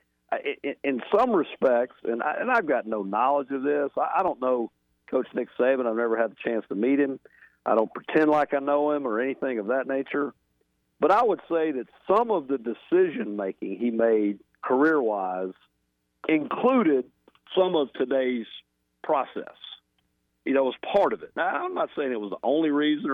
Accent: American